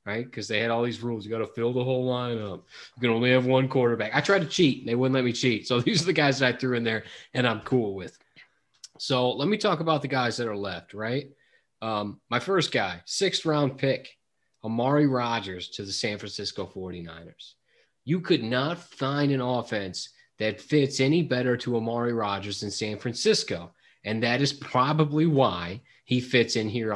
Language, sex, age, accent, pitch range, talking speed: English, male, 30-49, American, 105-135 Hz, 210 wpm